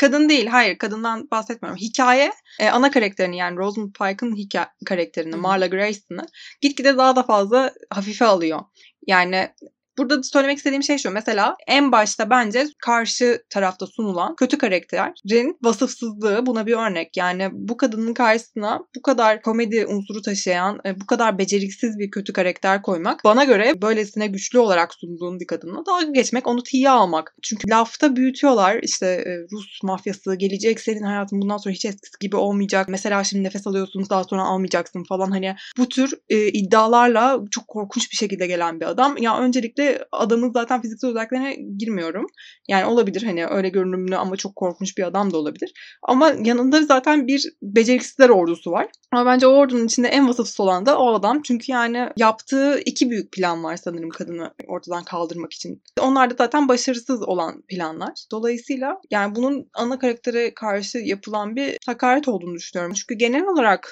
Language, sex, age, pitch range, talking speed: Turkish, female, 20-39, 195-255 Hz, 160 wpm